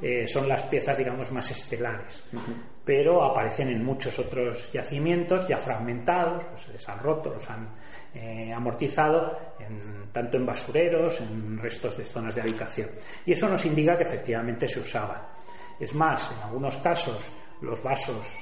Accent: Spanish